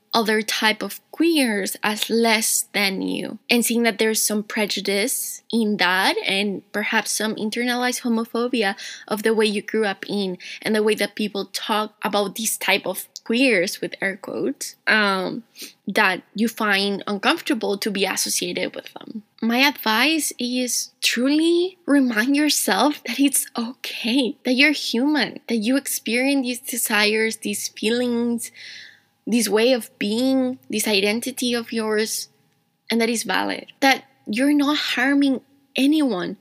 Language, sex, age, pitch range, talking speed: English, female, 10-29, 210-250 Hz, 145 wpm